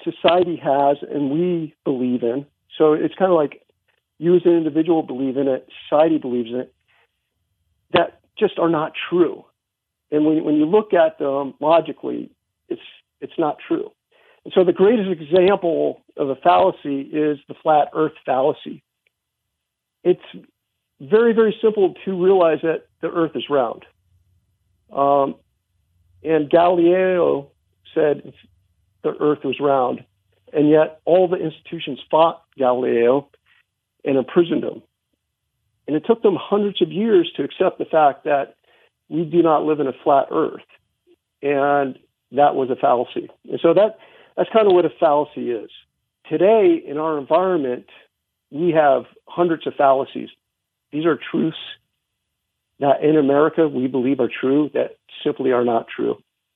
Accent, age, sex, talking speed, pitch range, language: American, 50-69, male, 150 wpm, 135-180 Hz, English